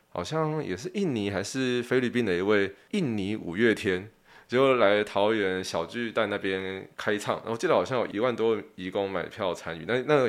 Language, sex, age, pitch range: Chinese, male, 20-39, 95-130 Hz